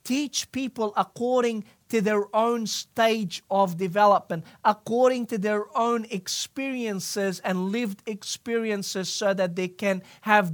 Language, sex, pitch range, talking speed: English, male, 180-225 Hz, 125 wpm